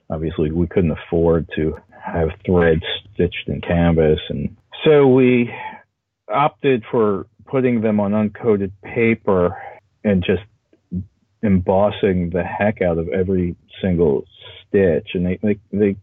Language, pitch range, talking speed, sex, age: English, 85-105 Hz, 125 wpm, male, 40-59